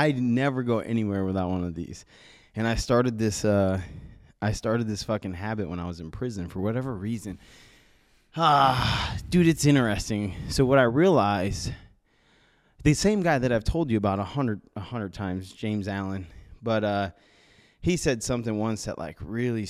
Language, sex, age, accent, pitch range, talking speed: English, male, 20-39, American, 90-115 Hz, 175 wpm